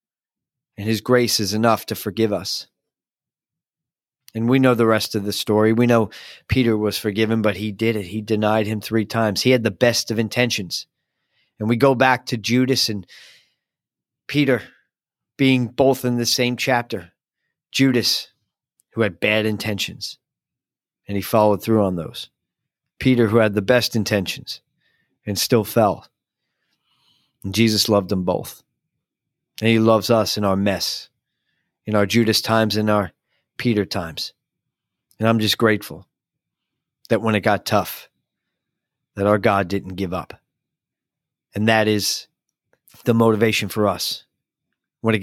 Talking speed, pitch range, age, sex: 150 wpm, 105-120 Hz, 40-59, male